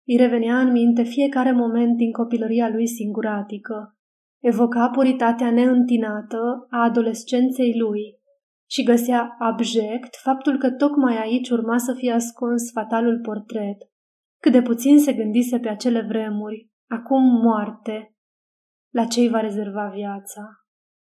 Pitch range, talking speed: 225-255 Hz, 130 wpm